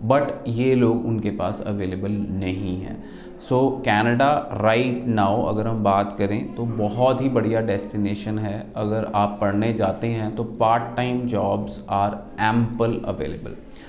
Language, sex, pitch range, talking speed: Punjabi, male, 105-125 Hz, 145 wpm